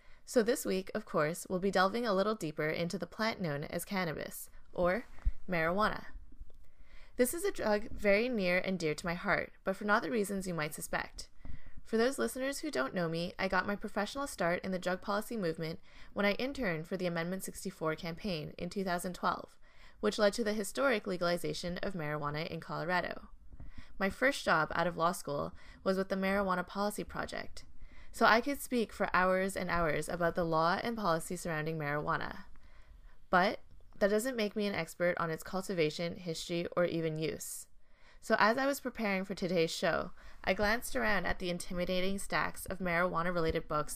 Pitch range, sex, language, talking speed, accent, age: 165-205 Hz, female, English, 185 wpm, American, 20-39